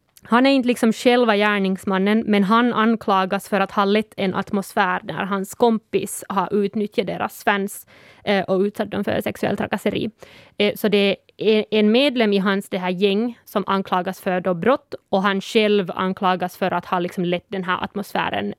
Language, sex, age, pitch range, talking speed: Swedish, female, 20-39, 195-225 Hz, 180 wpm